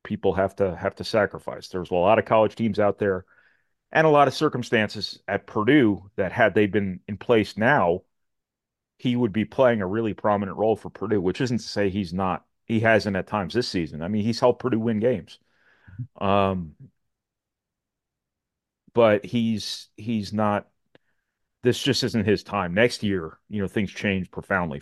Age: 40-59